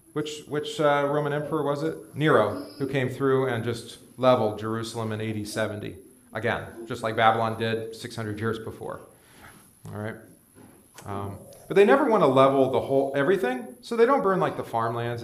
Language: English